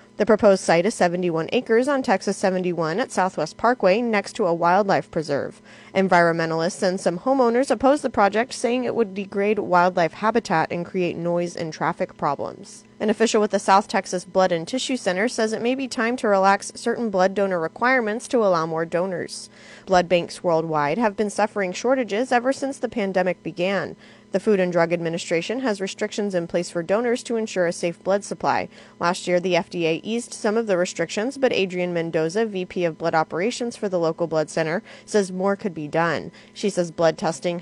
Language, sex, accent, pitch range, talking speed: English, female, American, 170-215 Hz, 190 wpm